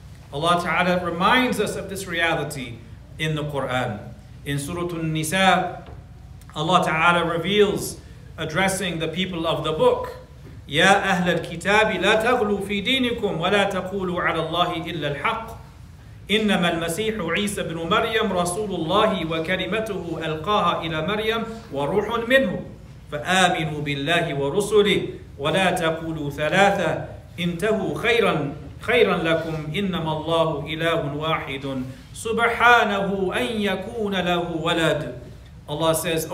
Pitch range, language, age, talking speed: 155-200 Hz, English, 50-69, 105 wpm